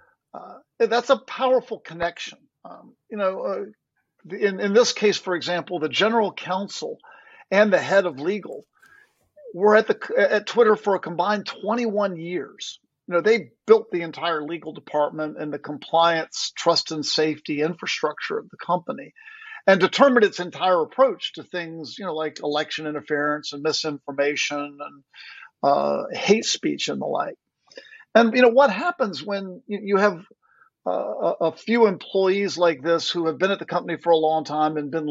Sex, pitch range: male, 160-225 Hz